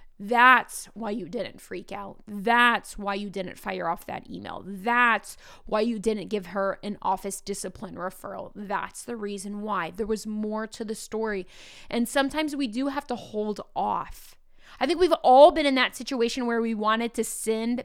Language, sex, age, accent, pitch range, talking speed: English, female, 20-39, American, 210-255 Hz, 185 wpm